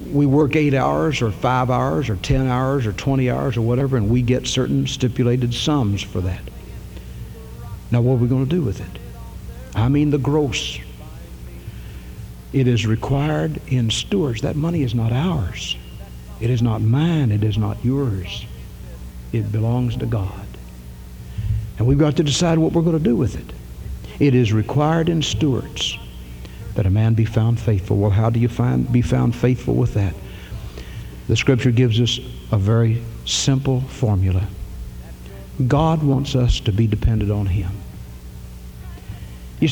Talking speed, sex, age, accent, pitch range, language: 165 wpm, male, 60-79, American, 90-135 Hz, English